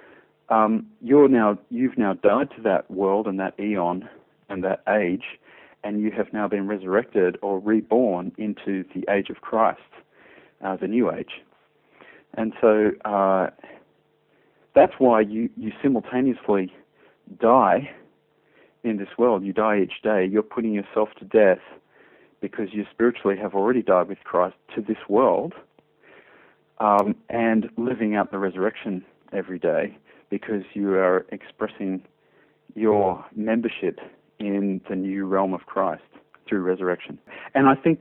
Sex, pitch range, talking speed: male, 100-115 Hz, 140 wpm